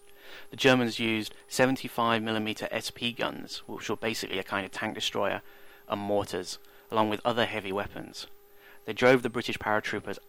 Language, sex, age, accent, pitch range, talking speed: English, male, 30-49, British, 105-125 Hz, 150 wpm